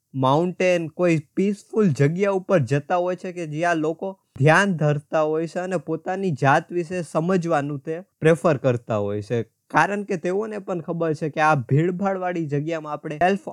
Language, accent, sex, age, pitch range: Gujarati, native, male, 20-39, 145-185 Hz